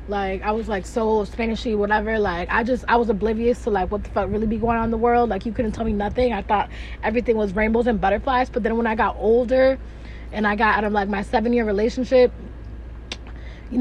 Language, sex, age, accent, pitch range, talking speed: English, female, 20-39, American, 210-250 Hz, 235 wpm